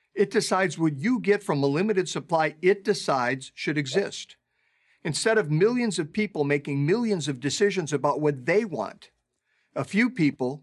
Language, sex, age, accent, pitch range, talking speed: English, male, 50-69, American, 135-190 Hz, 165 wpm